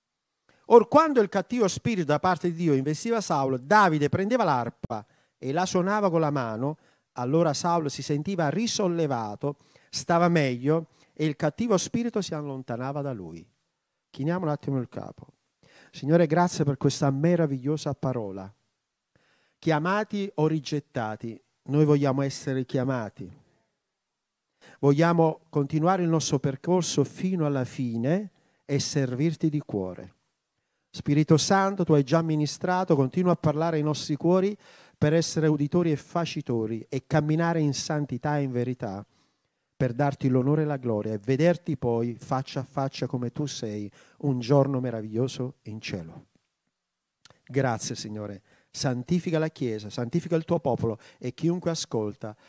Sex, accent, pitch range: male, native, 125-165 Hz